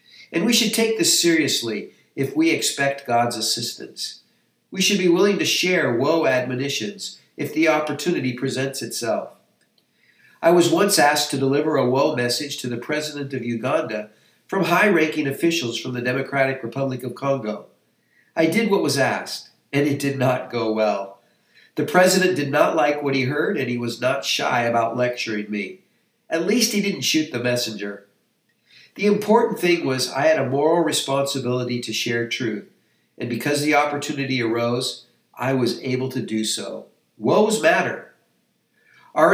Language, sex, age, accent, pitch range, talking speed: English, male, 50-69, American, 125-170 Hz, 165 wpm